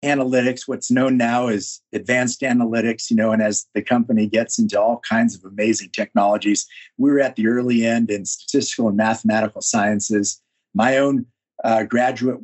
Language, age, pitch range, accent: English, 50-69, 110-135 Hz, American